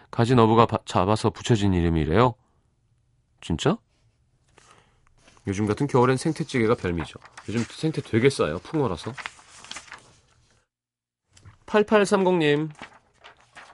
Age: 30-49